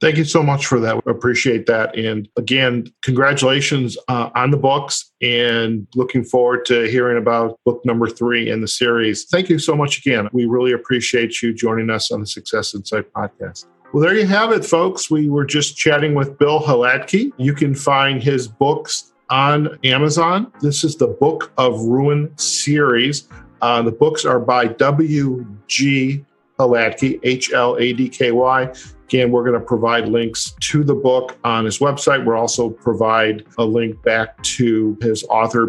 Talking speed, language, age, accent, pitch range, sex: 170 wpm, English, 50-69, American, 115-140 Hz, male